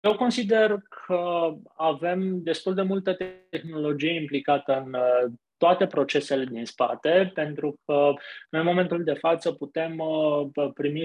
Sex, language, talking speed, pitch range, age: male, Romanian, 125 wpm, 145-185 Hz, 20-39